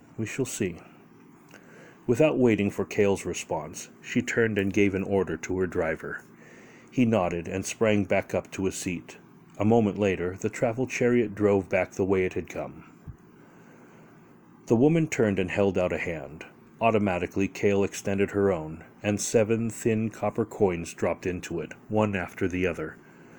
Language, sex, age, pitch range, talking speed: English, male, 40-59, 90-110 Hz, 165 wpm